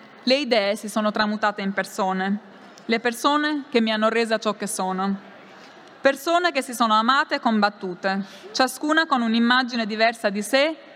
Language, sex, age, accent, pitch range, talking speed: Italian, female, 20-39, native, 200-260 Hz, 160 wpm